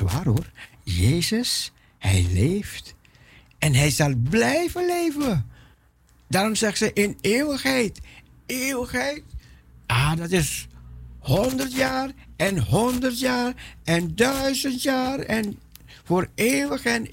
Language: Dutch